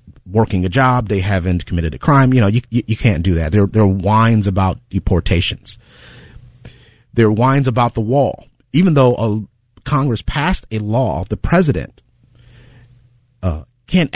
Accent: American